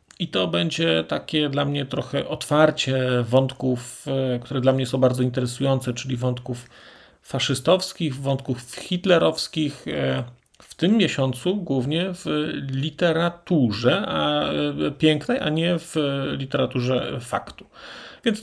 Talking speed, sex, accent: 110 wpm, male, native